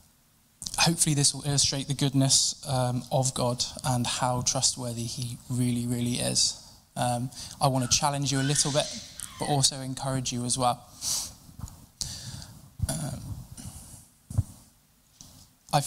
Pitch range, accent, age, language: 120-135 Hz, British, 10-29, English